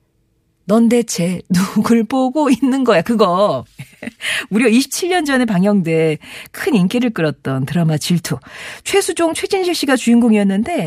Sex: female